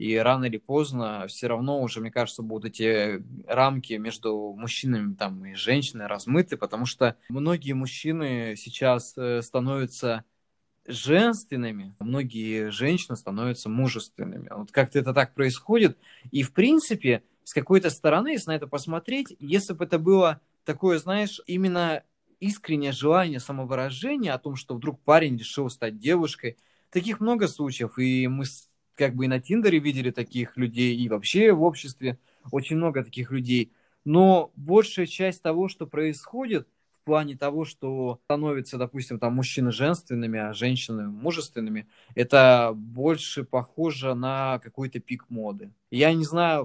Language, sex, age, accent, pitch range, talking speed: Russian, male, 20-39, native, 120-155 Hz, 140 wpm